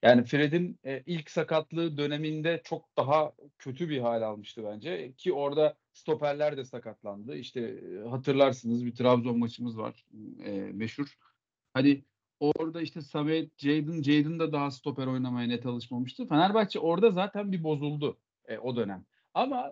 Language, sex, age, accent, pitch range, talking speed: Turkish, male, 40-59, native, 140-205 Hz, 145 wpm